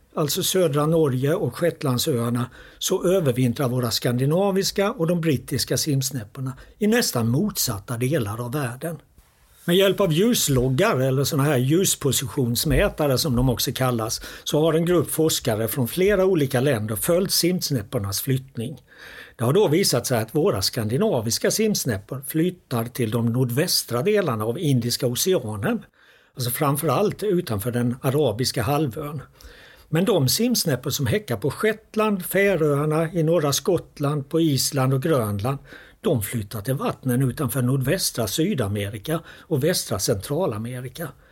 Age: 60-79